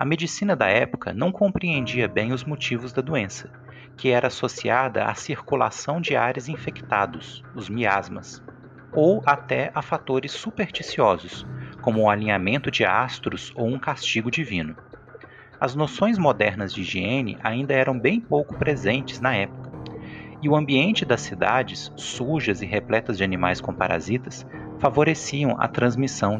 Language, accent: Portuguese, Brazilian